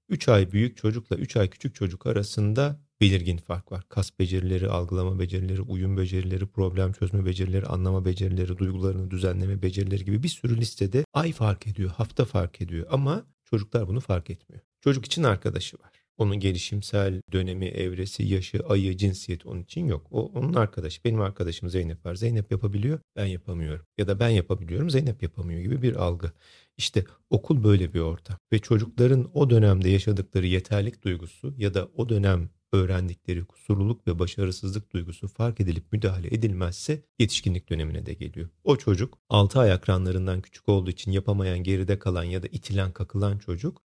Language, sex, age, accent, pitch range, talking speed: Turkish, male, 40-59, native, 95-115 Hz, 165 wpm